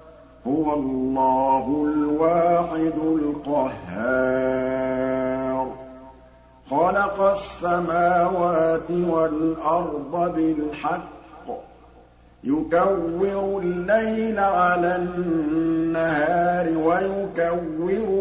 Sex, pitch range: male, 155-180 Hz